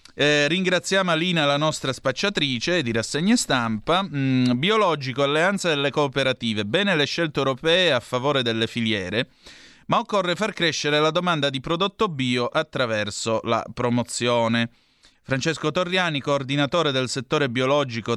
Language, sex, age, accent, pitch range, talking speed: Italian, male, 30-49, native, 115-150 Hz, 130 wpm